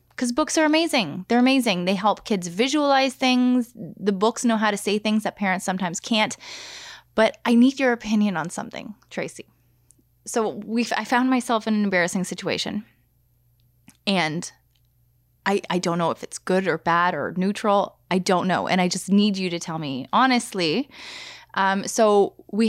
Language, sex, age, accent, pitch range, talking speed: English, female, 20-39, American, 175-240 Hz, 175 wpm